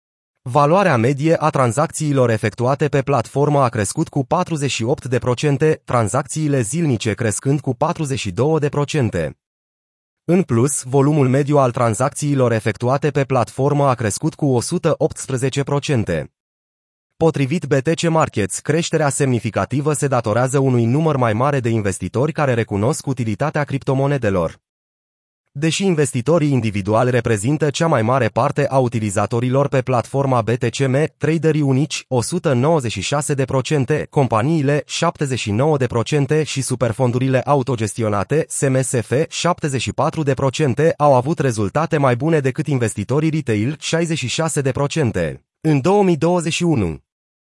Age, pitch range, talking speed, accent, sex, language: 30-49, 120-150 Hz, 100 wpm, native, male, Romanian